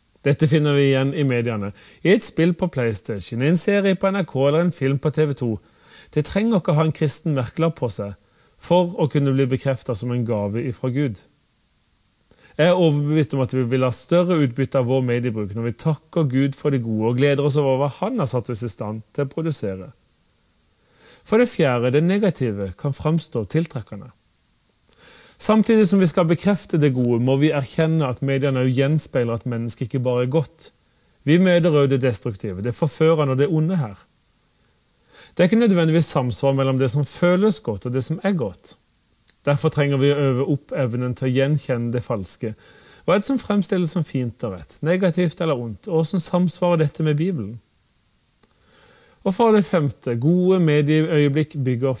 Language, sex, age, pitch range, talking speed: English, male, 40-59, 120-165 Hz, 185 wpm